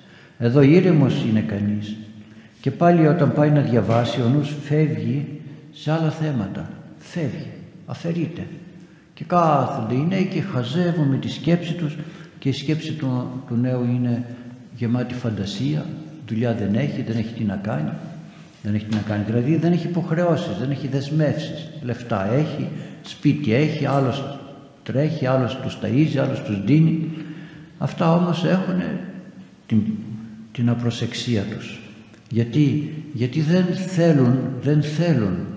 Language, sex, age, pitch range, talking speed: Greek, male, 60-79, 115-155 Hz, 130 wpm